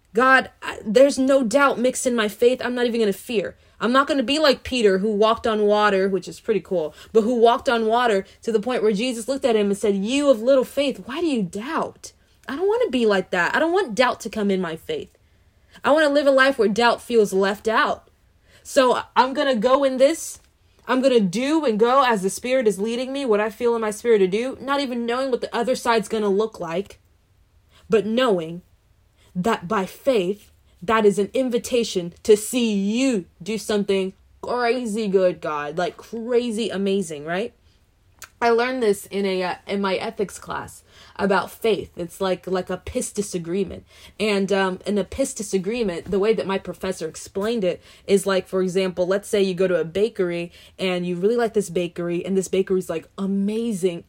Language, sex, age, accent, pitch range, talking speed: English, female, 20-39, American, 190-245 Hz, 215 wpm